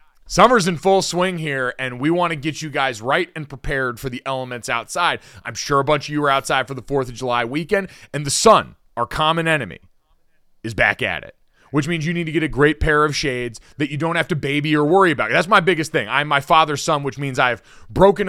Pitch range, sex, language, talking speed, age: 130-165 Hz, male, English, 245 wpm, 30-49